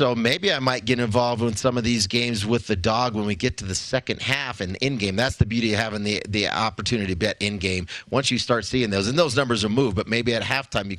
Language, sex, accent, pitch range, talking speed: English, male, American, 105-120 Hz, 280 wpm